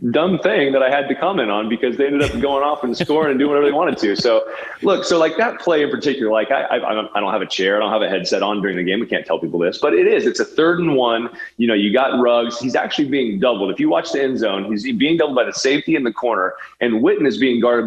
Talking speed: 300 wpm